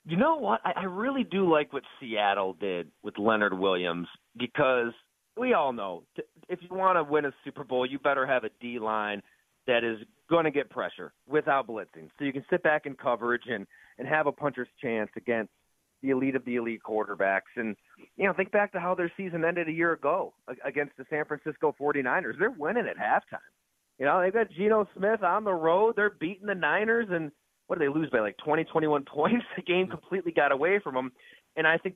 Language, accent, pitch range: English, American, 130-190 Hz